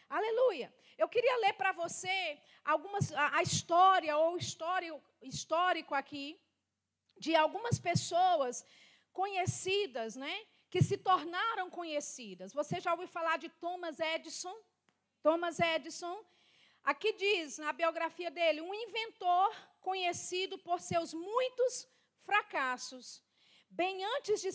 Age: 40-59